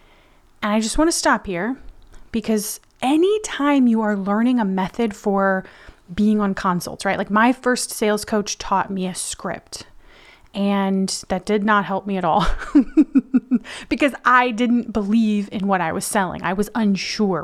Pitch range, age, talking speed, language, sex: 200-260 Hz, 30-49, 170 wpm, English, female